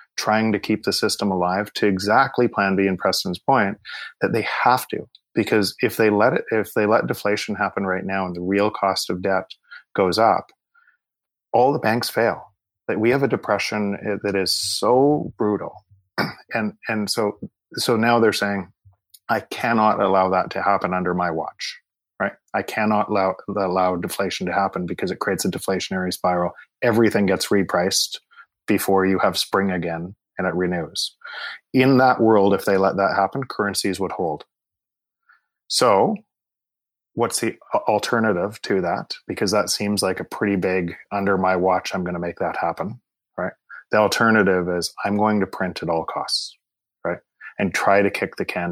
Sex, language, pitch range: male, English, 95-105 Hz